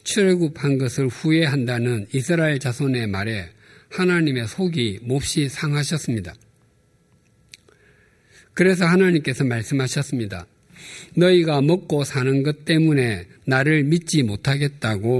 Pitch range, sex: 120-165 Hz, male